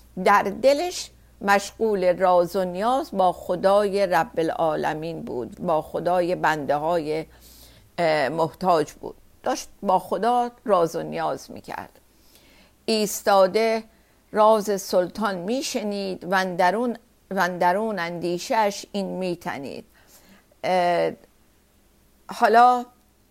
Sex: female